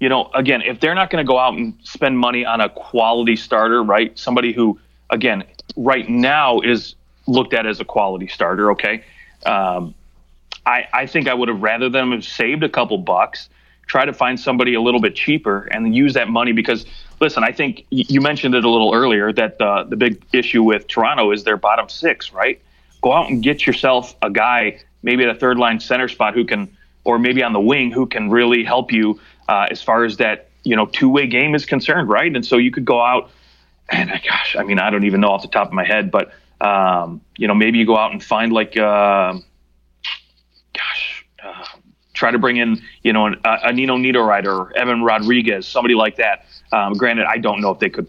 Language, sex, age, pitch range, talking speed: English, male, 30-49, 100-125 Hz, 220 wpm